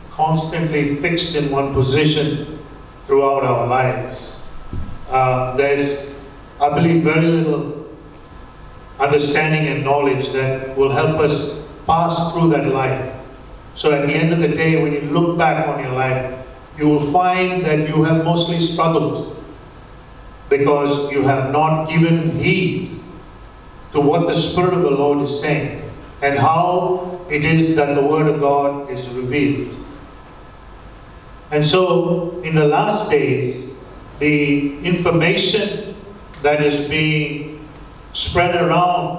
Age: 50-69